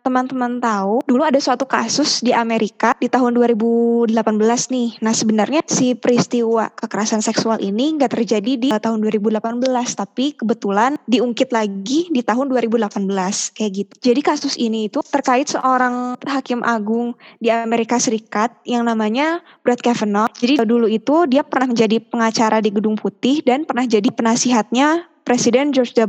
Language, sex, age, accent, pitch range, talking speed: Indonesian, female, 20-39, native, 225-255 Hz, 145 wpm